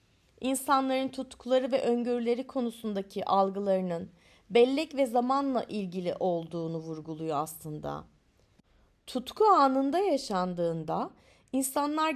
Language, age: Turkish, 30-49